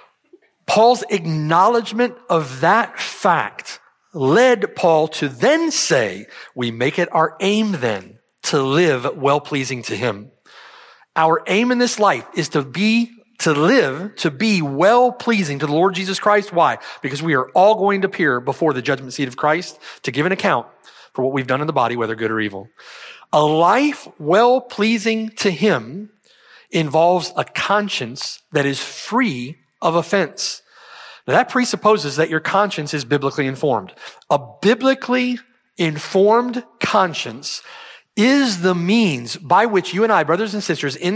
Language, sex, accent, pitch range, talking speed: English, male, American, 150-220 Hz, 160 wpm